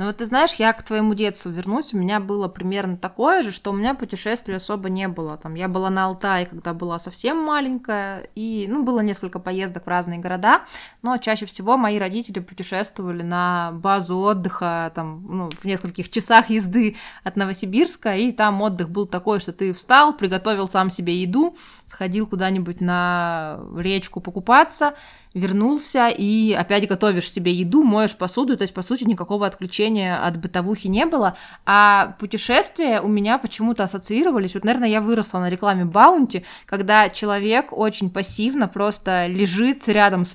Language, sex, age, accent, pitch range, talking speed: Russian, female, 20-39, native, 185-225 Hz, 160 wpm